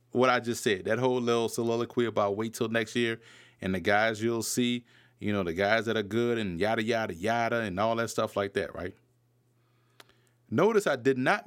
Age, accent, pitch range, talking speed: 30-49, American, 120-135 Hz, 210 wpm